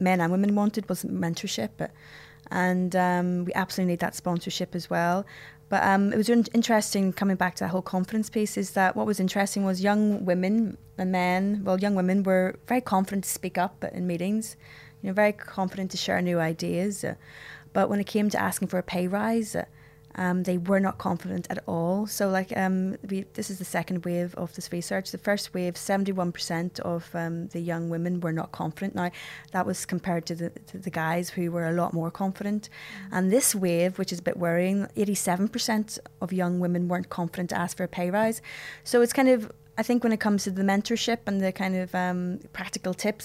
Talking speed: 205 wpm